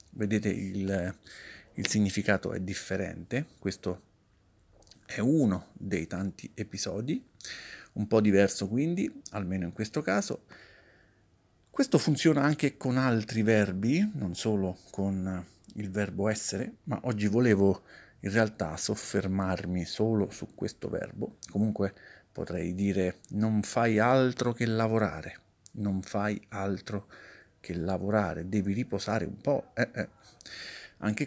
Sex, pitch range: male, 95-110 Hz